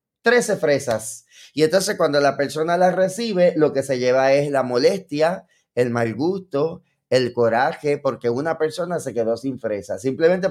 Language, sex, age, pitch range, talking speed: English, male, 20-39, 135-170 Hz, 165 wpm